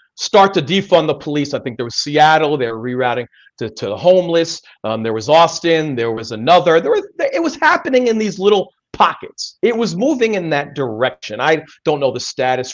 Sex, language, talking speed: male, English, 205 wpm